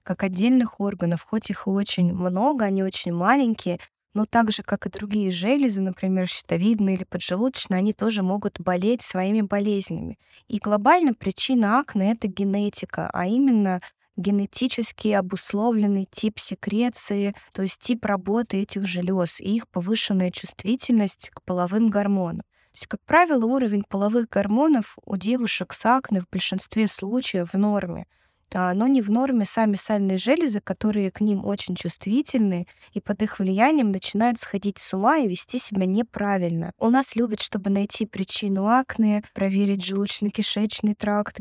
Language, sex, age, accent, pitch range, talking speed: Russian, female, 20-39, native, 195-225 Hz, 150 wpm